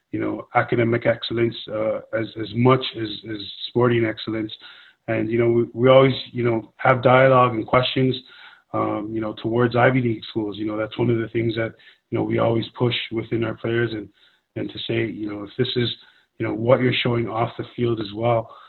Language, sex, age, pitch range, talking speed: English, male, 20-39, 110-125 Hz, 210 wpm